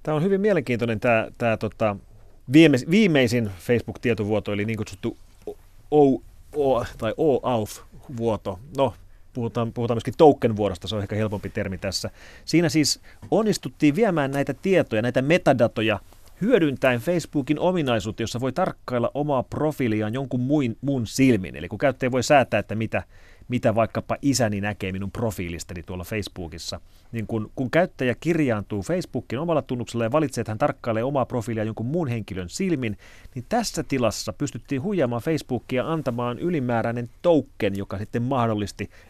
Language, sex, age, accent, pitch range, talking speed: Finnish, male, 30-49, native, 110-145 Hz, 145 wpm